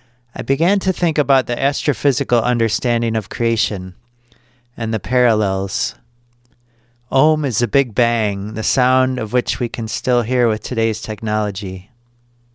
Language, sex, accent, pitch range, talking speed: English, male, American, 115-130 Hz, 140 wpm